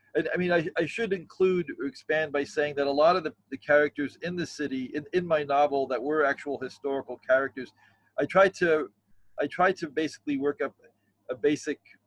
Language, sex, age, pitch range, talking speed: English, male, 40-59, 125-160 Hz, 205 wpm